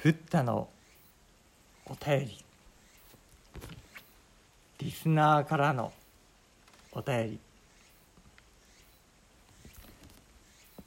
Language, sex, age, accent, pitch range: Japanese, male, 50-69, native, 100-140 Hz